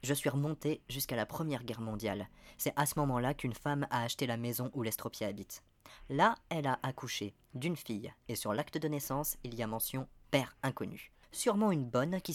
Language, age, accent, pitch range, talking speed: French, 30-49, French, 115-155 Hz, 215 wpm